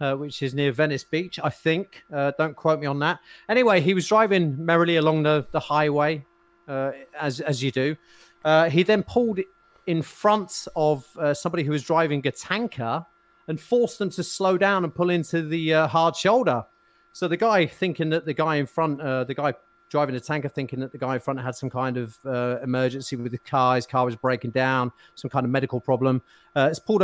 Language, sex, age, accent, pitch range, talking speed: English, male, 30-49, British, 140-175 Hz, 215 wpm